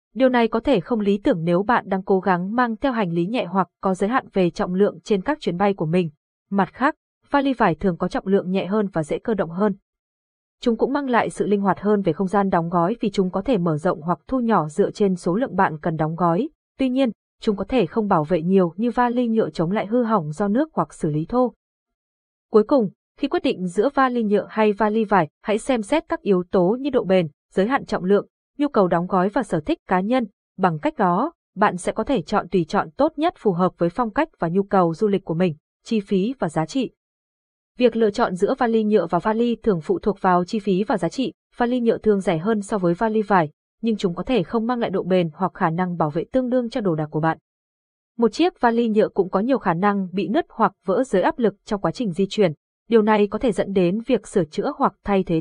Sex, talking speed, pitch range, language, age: female, 260 wpm, 185-235 Hz, Vietnamese, 20-39